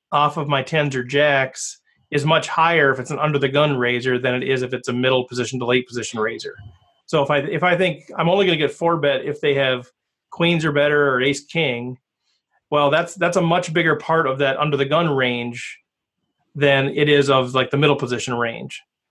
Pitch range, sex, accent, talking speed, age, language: 135-165 Hz, male, American, 225 wpm, 30-49, English